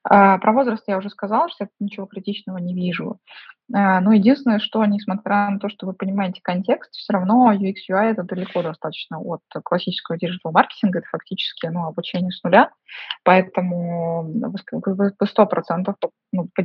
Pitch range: 180-215 Hz